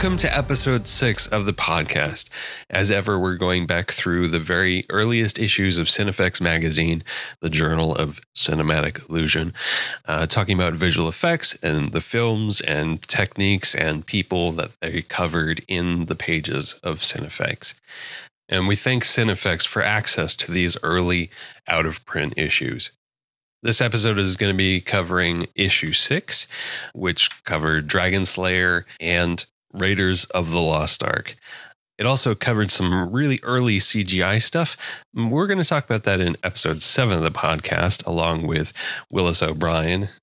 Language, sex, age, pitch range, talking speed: English, male, 30-49, 85-110 Hz, 150 wpm